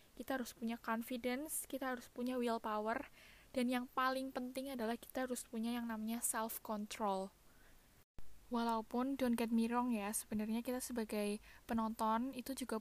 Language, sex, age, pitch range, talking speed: Indonesian, female, 10-29, 215-240 Hz, 145 wpm